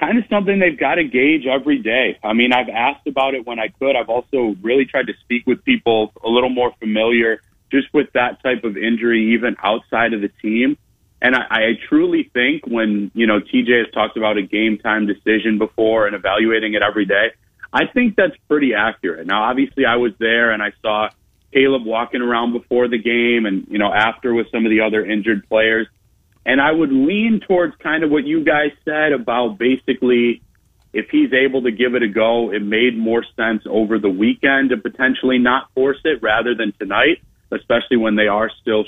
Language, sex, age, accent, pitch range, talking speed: English, male, 30-49, American, 110-135 Hz, 205 wpm